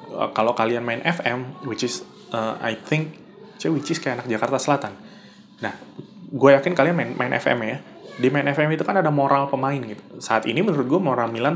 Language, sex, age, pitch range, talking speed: Indonesian, male, 20-39, 115-145 Hz, 195 wpm